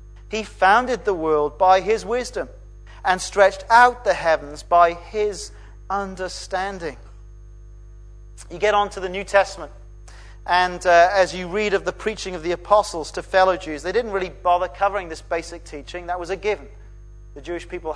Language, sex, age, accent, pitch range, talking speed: English, male, 40-59, British, 155-200 Hz, 170 wpm